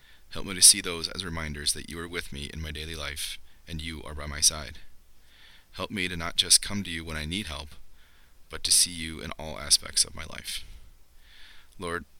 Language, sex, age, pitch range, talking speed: English, male, 30-49, 75-85 Hz, 220 wpm